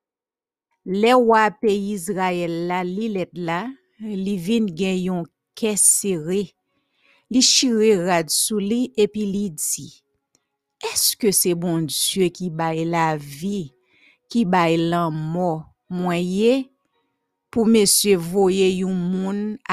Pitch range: 175-225 Hz